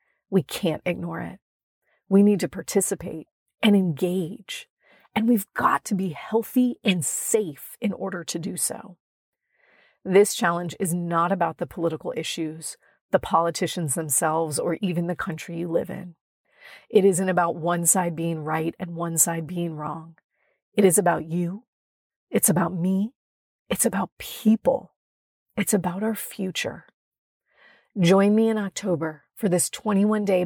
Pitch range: 175-215 Hz